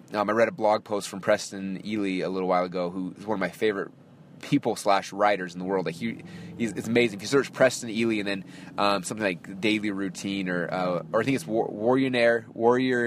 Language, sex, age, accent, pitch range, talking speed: English, male, 20-39, American, 100-125 Hz, 230 wpm